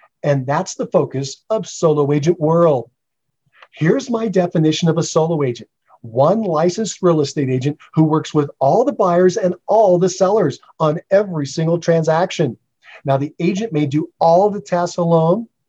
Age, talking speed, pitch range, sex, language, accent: 40-59, 165 wpm, 145-185 Hz, male, English, American